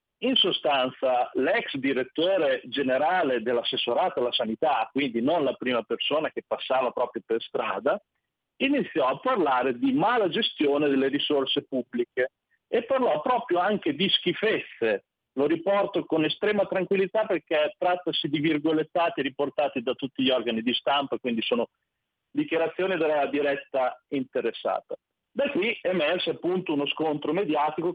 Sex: male